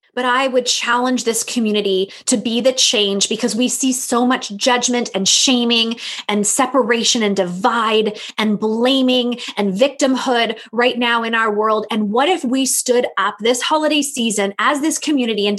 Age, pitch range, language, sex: 20-39, 215-265 Hz, English, female